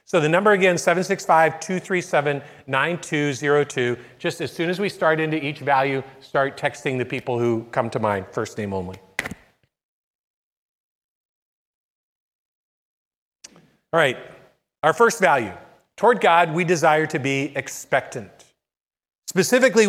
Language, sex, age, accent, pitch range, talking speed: English, male, 40-59, American, 145-205 Hz, 115 wpm